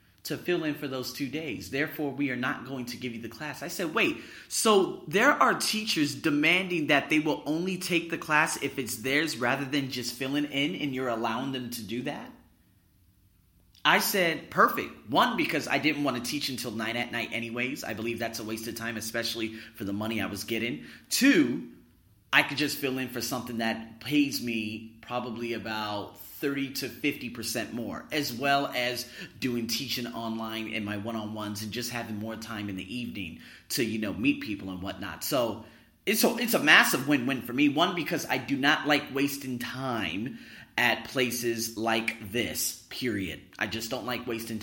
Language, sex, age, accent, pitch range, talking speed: English, male, 30-49, American, 110-145 Hz, 190 wpm